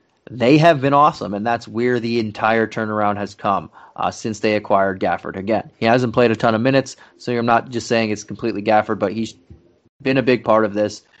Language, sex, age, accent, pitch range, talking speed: English, male, 30-49, American, 105-120 Hz, 220 wpm